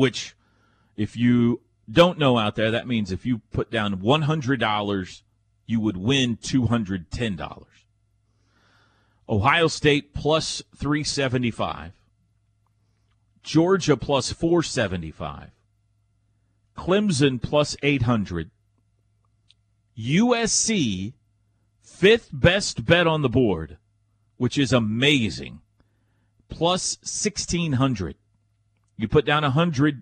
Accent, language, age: American, English, 40-59